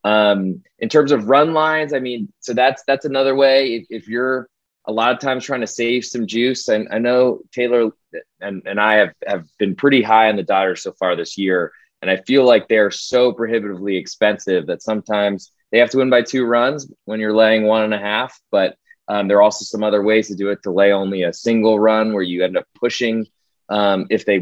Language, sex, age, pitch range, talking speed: English, male, 20-39, 100-125 Hz, 230 wpm